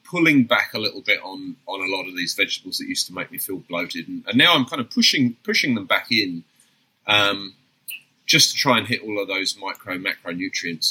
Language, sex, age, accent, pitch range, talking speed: English, male, 30-49, British, 100-155 Hz, 225 wpm